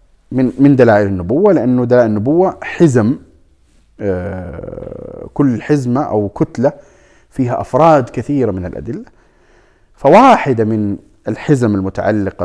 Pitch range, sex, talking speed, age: 105-130 Hz, male, 100 wpm, 30-49